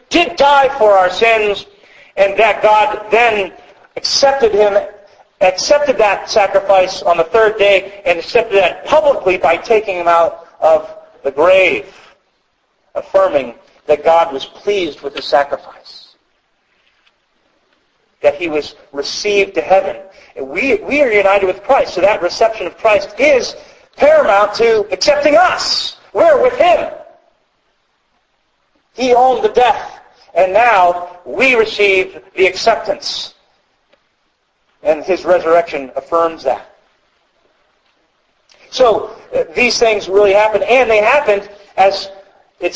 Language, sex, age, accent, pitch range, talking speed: English, male, 40-59, American, 185-245 Hz, 125 wpm